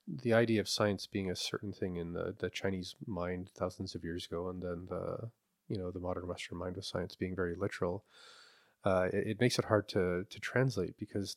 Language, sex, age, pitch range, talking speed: English, male, 30-49, 95-110 Hz, 215 wpm